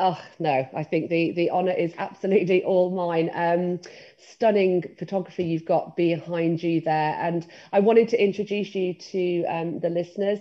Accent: British